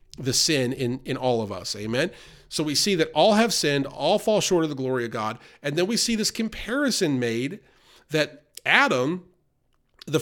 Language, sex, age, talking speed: English, male, 40-59, 195 wpm